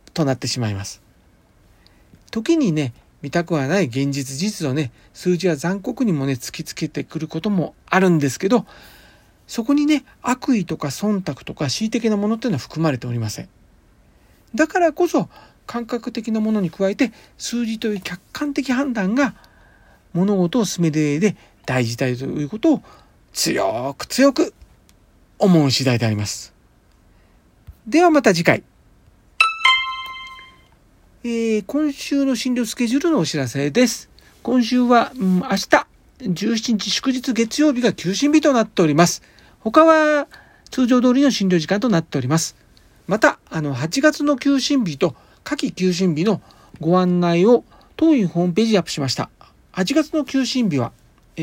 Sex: male